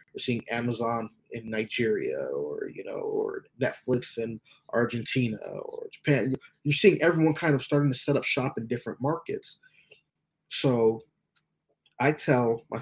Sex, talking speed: male, 145 wpm